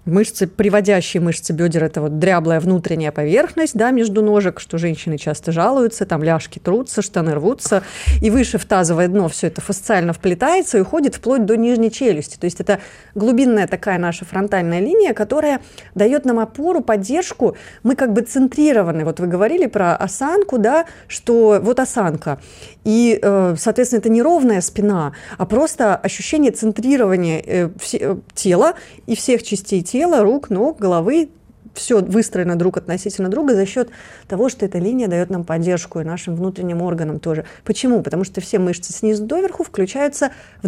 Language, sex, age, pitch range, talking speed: Russian, female, 30-49, 180-245 Hz, 160 wpm